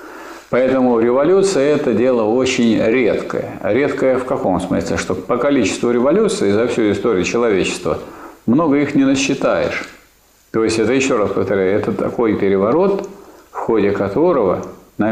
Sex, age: male, 50-69